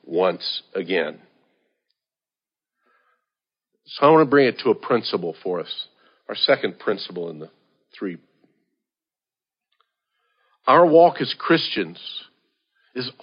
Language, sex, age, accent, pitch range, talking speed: English, male, 50-69, American, 130-170 Hz, 110 wpm